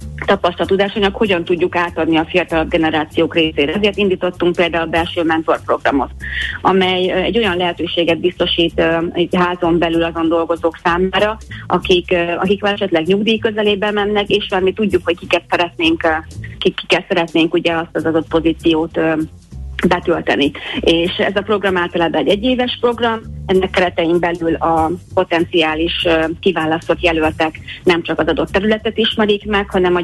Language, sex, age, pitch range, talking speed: Hungarian, female, 30-49, 165-190 Hz, 140 wpm